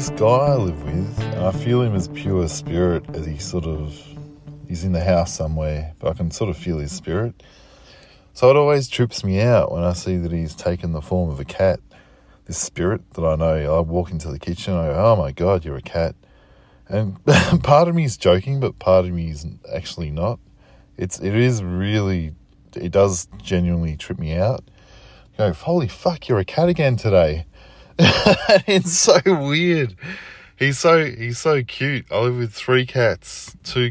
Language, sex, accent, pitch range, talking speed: English, male, Australian, 90-125 Hz, 195 wpm